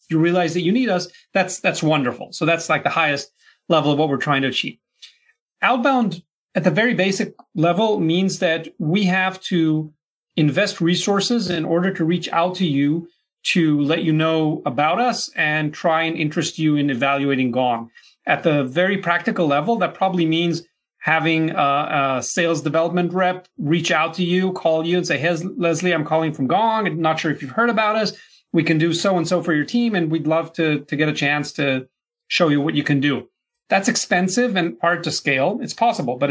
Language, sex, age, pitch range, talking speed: English, male, 30-49, 155-185 Hz, 200 wpm